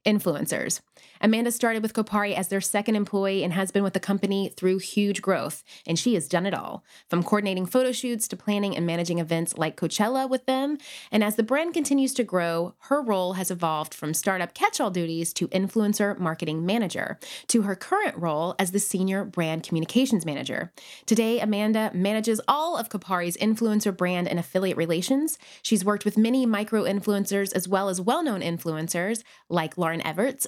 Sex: female